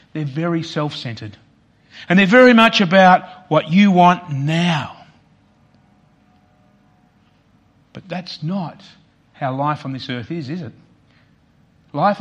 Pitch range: 135-180 Hz